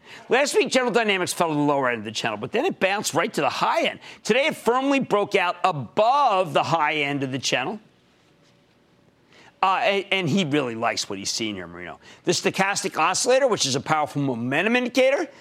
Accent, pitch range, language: American, 140-230 Hz, English